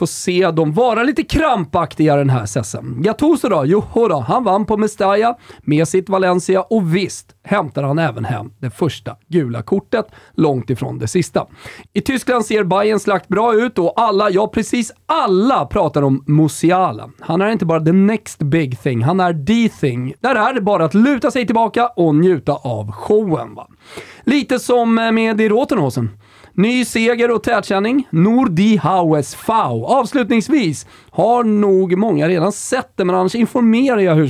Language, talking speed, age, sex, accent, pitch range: Swedish, 175 wpm, 30-49, male, native, 150-225 Hz